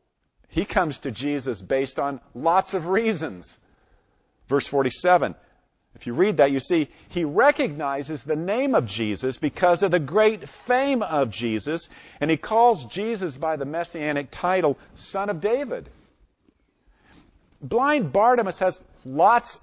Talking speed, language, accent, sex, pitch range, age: 140 wpm, English, American, male, 115-180 Hz, 50-69